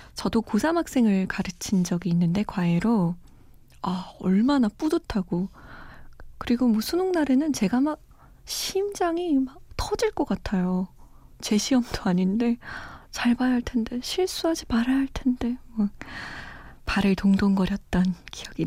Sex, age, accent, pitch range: female, 20-39, native, 180-255 Hz